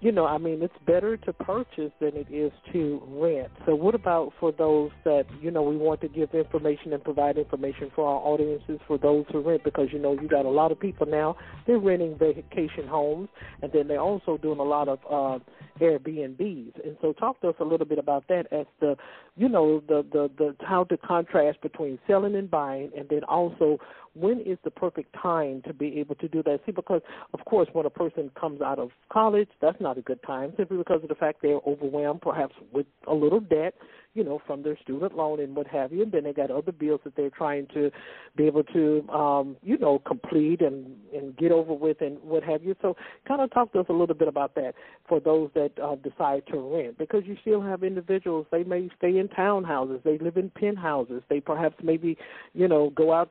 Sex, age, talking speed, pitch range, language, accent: male, 50-69, 225 wpm, 145-175 Hz, English, American